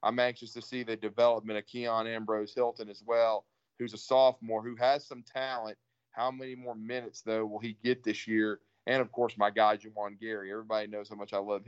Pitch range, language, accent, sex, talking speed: 110-125 Hz, English, American, male, 215 wpm